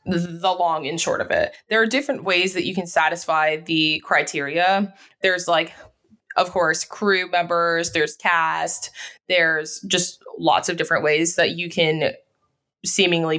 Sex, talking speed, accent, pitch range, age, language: female, 150 wpm, American, 165-210 Hz, 20-39, English